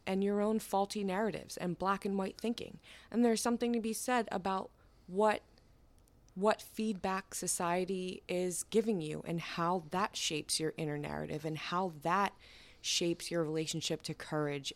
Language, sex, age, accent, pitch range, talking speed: English, female, 20-39, American, 155-185 Hz, 160 wpm